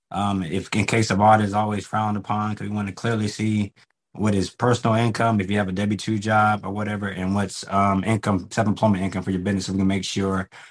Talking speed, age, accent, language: 240 wpm, 20-39, American, English